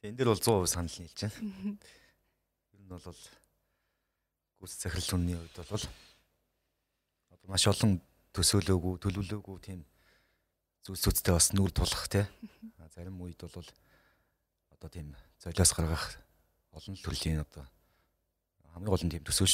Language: Russian